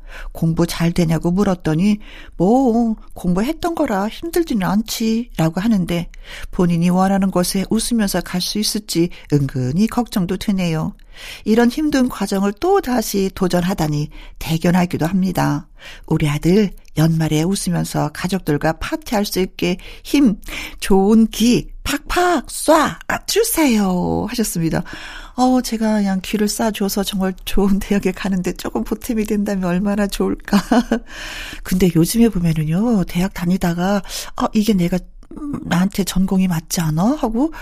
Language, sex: Korean, female